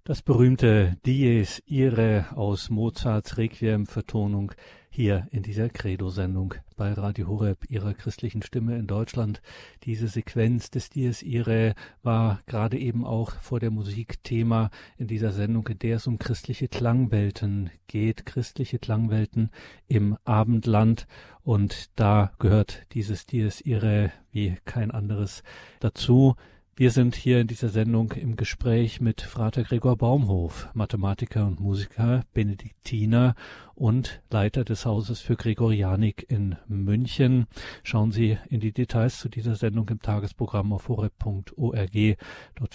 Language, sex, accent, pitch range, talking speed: German, male, German, 105-120 Hz, 130 wpm